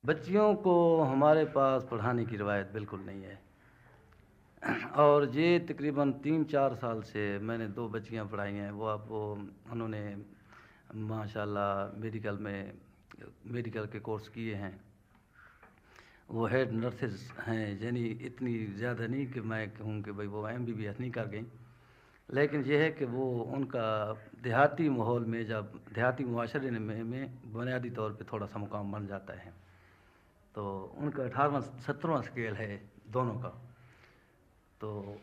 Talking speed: 140 wpm